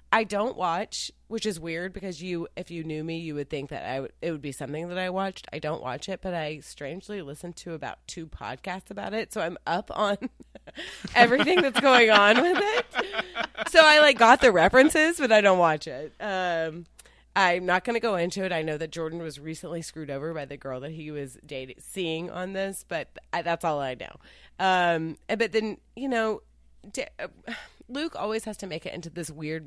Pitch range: 145-205 Hz